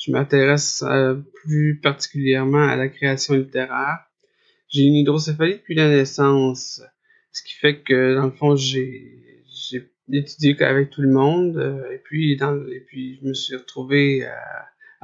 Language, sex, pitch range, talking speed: French, male, 135-150 Hz, 145 wpm